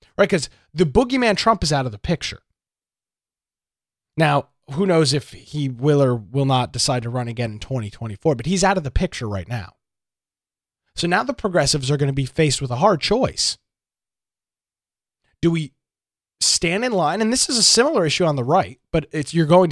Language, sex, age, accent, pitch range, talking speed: English, male, 30-49, American, 130-180 Hz, 195 wpm